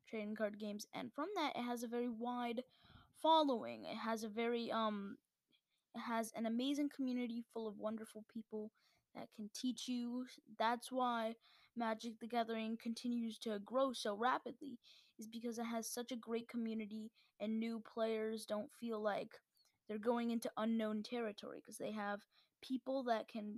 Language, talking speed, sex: English, 165 wpm, female